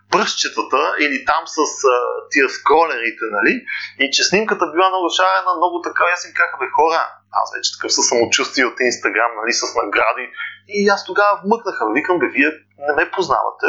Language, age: Bulgarian, 30-49